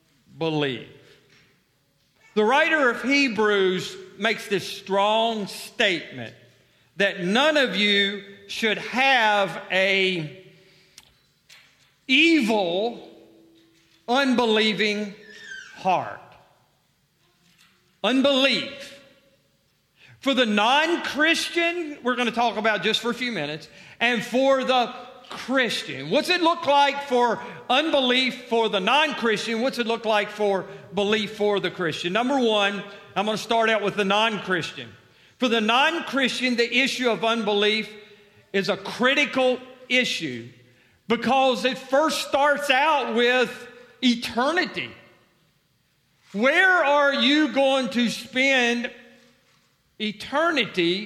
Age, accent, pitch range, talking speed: 50-69, American, 190-255 Hz, 105 wpm